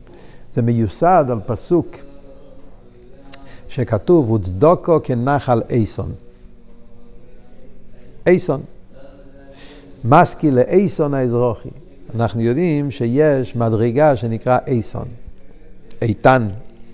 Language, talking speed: Hebrew, 65 wpm